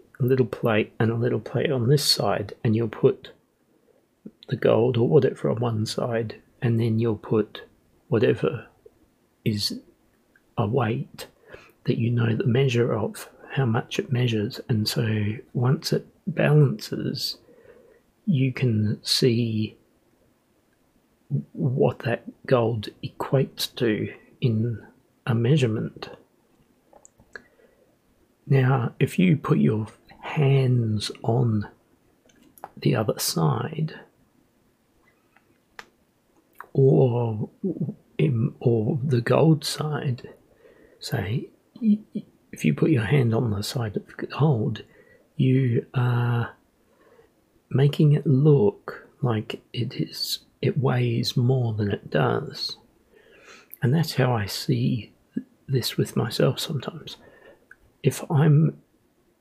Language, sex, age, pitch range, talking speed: English, male, 40-59, 115-145 Hz, 105 wpm